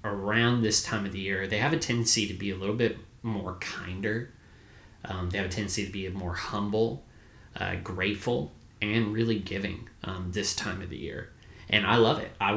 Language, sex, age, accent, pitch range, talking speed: English, male, 20-39, American, 95-110 Hz, 200 wpm